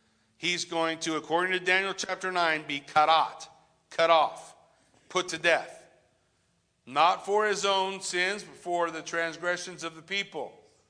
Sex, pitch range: male, 140-180 Hz